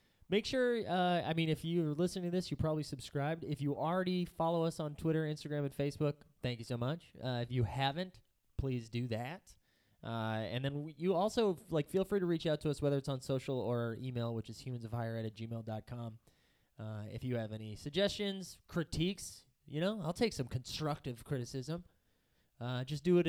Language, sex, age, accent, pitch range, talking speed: English, male, 20-39, American, 120-165 Hz, 190 wpm